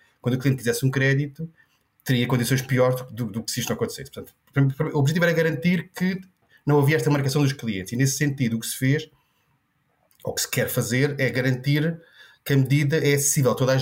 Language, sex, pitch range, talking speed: Portuguese, male, 120-145 Hz, 220 wpm